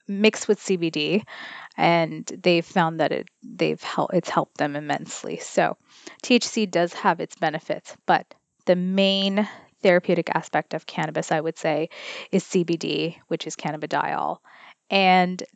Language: English